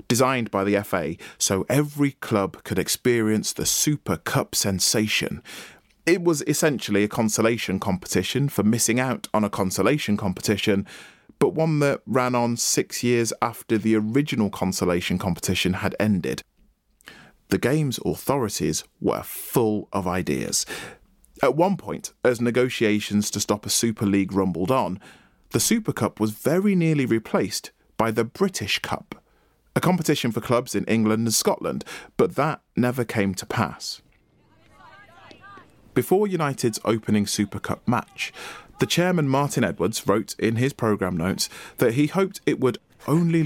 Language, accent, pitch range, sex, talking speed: English, British, 105-135 Hz, male, 145 wpm